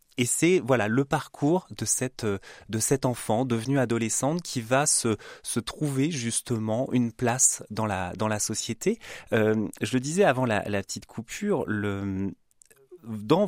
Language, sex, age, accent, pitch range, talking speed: French, male, 30-49, French, 100-135 Hz, 160 wpm